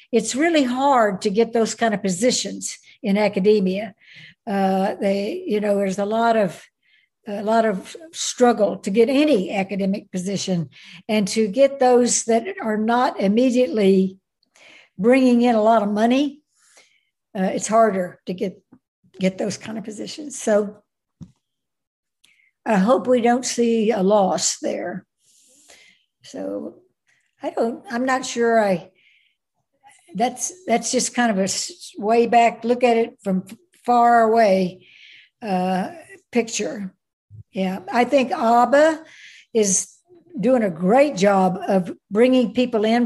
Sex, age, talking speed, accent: female, 60-79, 135 wpm, American